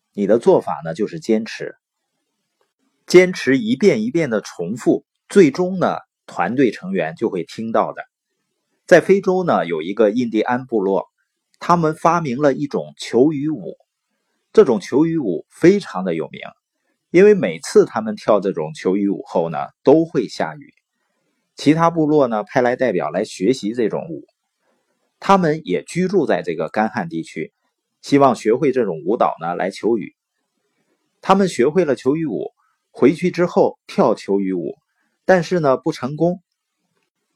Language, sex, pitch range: Chinese, male, 125-185 Hz